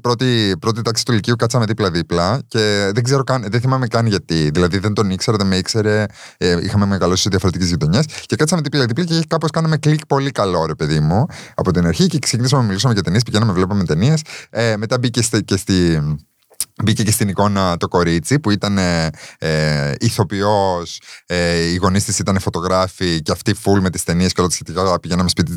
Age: 20-39